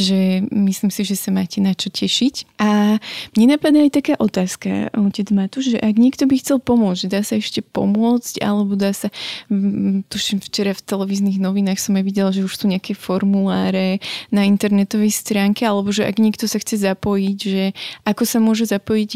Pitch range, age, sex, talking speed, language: 195-210 Hz, 20-39, female, 185 wpm, Slovak